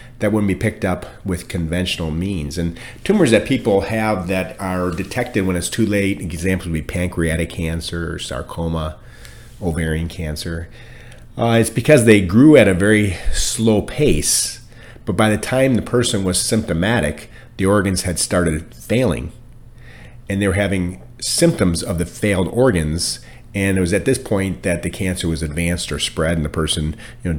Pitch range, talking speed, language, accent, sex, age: 85-110 Hz, 170 wpm, English, American, male, 40-59